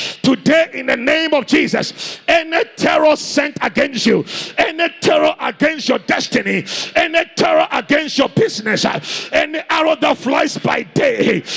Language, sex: English, male